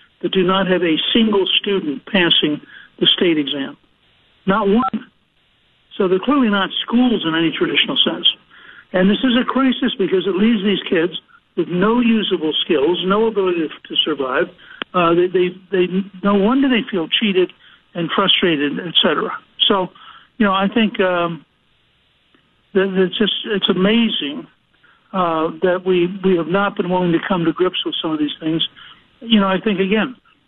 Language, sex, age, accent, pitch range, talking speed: English, male, 60-79, American, 175-210 Hz, 170 wpm